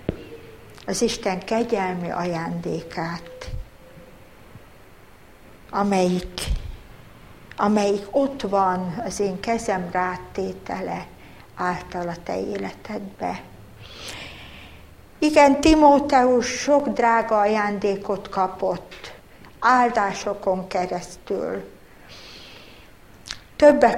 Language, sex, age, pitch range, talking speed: Hungarian, female, 60-79, 180-245 Hz, 65 wpm